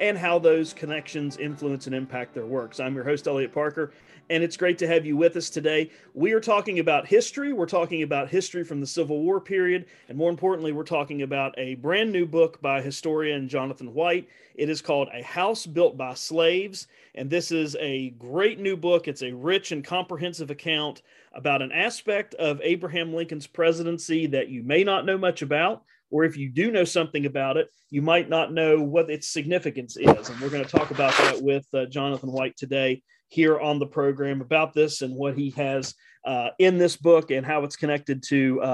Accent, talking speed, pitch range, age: American, 210 wpm, 140-170 Hz, 40-59